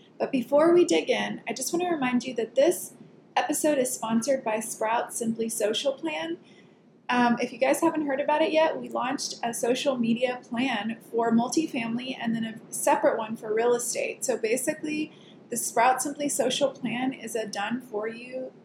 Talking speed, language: 180 wpm, English